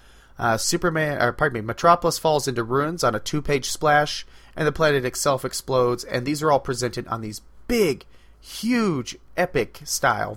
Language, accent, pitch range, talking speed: English, American, 105-145 Hz, 160 wpm